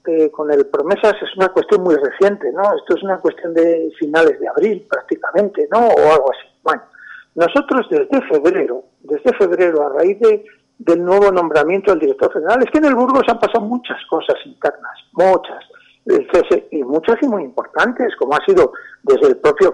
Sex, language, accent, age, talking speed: male, Spanish, Spanish, 60-79, 180 wpm